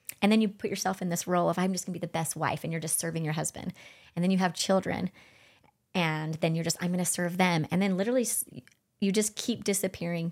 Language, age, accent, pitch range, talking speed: English, 30-49, American, 165-215 Hz, 255 wpm